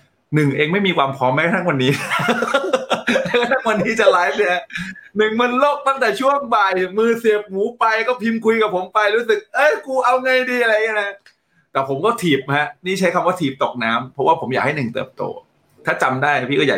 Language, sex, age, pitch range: Thai, male, 20-39, 125-190 Hz